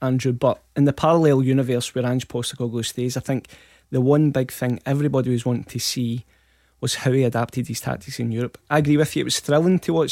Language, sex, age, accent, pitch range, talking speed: English, male, 20-39, British, 120-140 Hz, 225 wpm